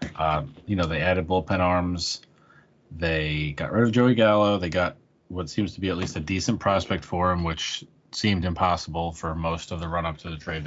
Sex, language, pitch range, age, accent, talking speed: male, English, 85-95 Hz, 30-49, American, 210 wpm